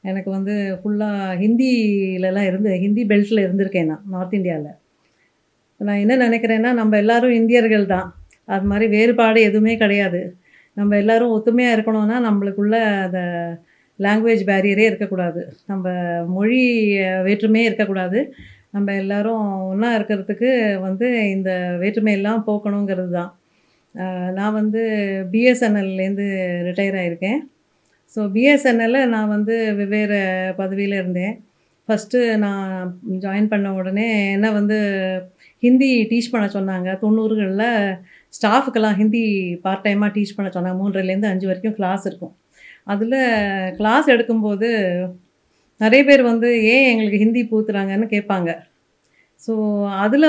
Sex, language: female, Tamil